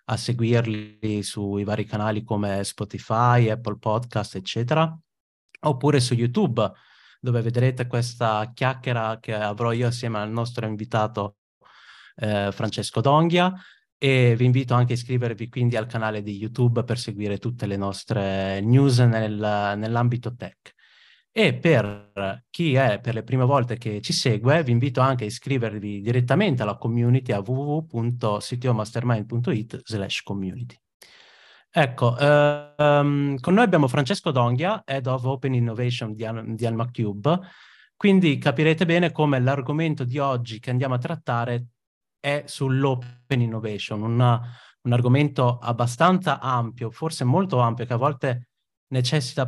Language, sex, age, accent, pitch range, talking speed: Italian, male, 30-49, native, 110-135 Hz, 130 wpm